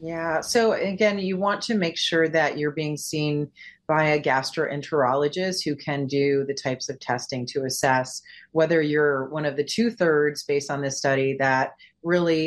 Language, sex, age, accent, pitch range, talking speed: English, female, 30-49, American, 140-160 Hz, 180 wpm